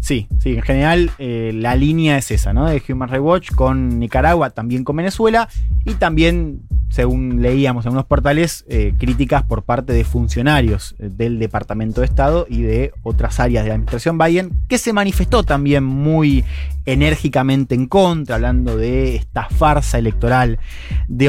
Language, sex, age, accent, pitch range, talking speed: Spanish, male, 20-39, Argentinian, 115-150 Hz, 165 wpm